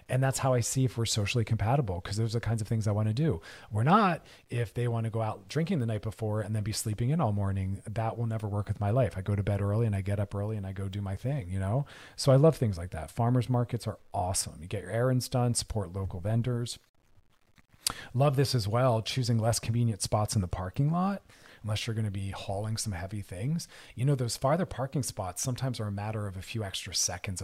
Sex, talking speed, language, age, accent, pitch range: male, 260 wpm, English, 40-59, American, 100-130 Hz